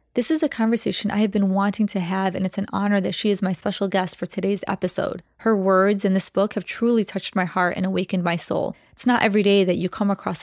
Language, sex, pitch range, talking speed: English, female, 185-215 Hz, 260 wpm